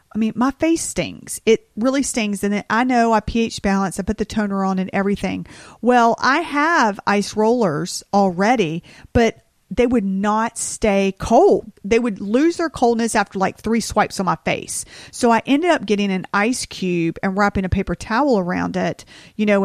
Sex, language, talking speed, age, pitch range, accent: female, English, 190 wpm, 40-59, 185-225 Hz, American